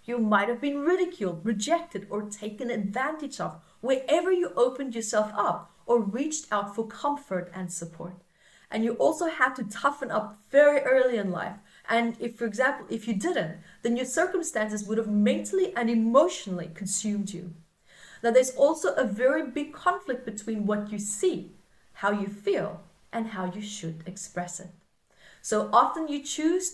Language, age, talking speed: English, 30-49, 165 wpm